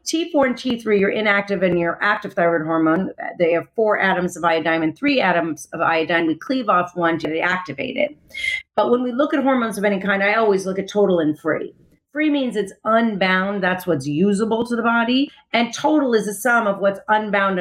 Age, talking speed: 40-59, 215 wpm